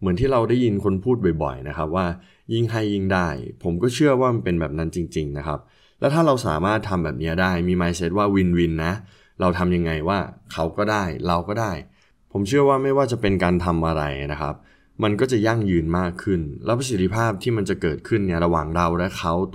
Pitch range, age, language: 85-105 Hz, 20-39, Thai